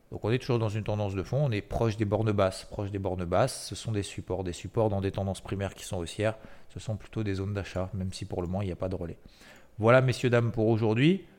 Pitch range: 95-115 Hz